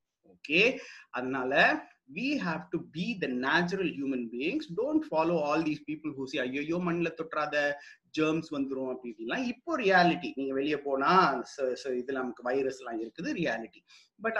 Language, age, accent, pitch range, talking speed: Tamil, 30-49, native, 135-210 Hz, 165 wpm